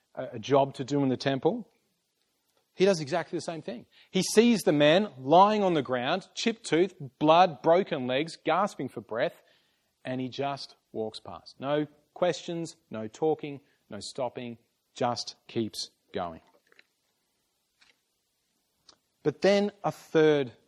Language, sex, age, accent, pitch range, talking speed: English, male, 30-49, Australian, 125-160 Hz, 135 wpm